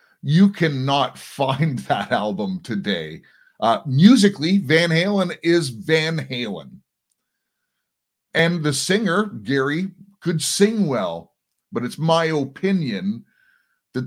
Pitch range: 120-185 Hz